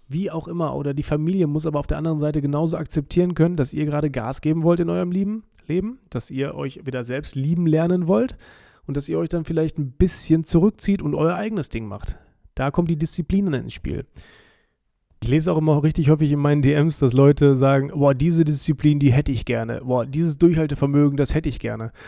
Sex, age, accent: male, 30-49, German